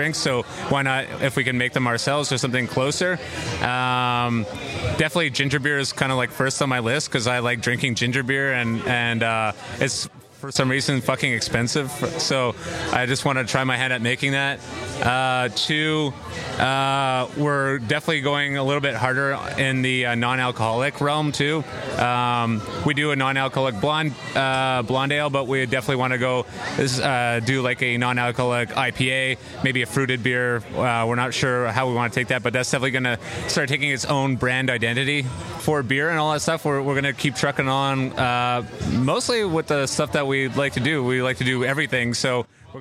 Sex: male